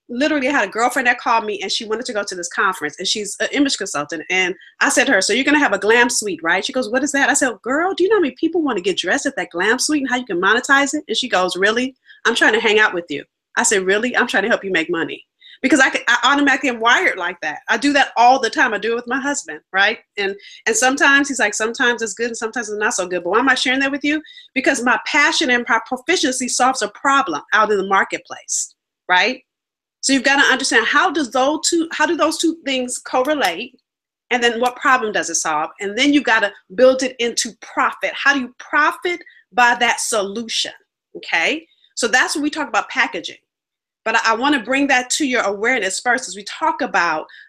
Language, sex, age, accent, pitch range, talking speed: English, female, 30-49, American, 225-295 Hz, 255 wpm